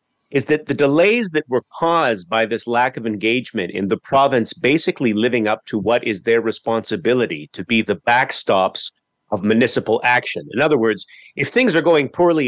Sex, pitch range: male, 115-155 Hz